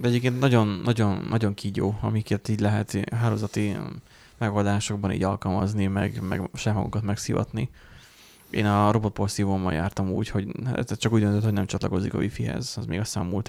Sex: male